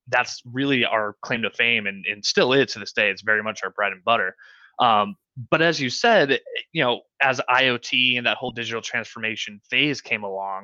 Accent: American